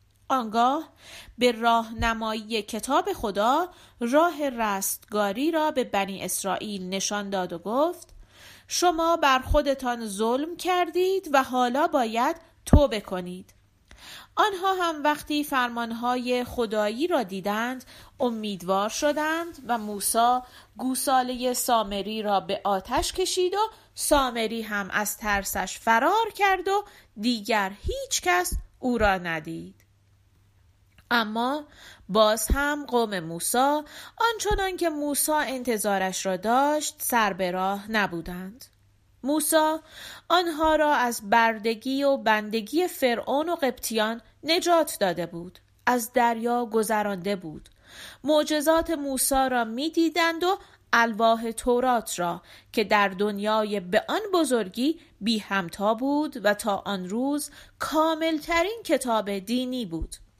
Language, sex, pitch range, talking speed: Persian, female, 205-300 Hz, 115 wpm